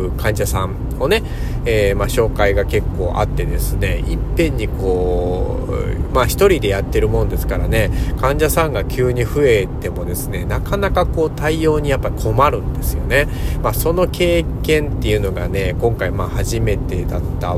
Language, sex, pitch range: Japanese, male, 90-120 Hz